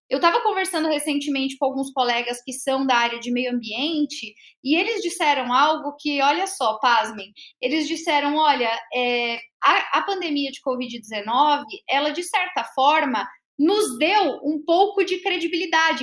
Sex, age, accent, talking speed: female, 10-29, Brazilian, 150 wpm